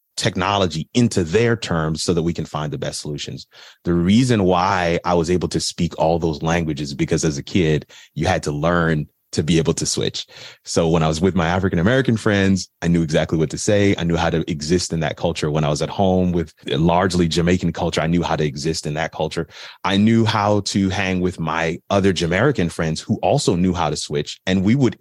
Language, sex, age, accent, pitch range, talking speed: English, male, 30-49, American, 85-100 Hz, 230 wpm